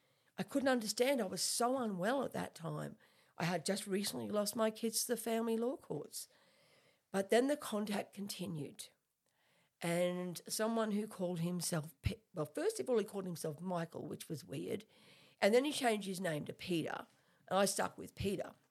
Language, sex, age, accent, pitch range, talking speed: English, female, 50-69, Australian, 165-215 Hz, 185 wpm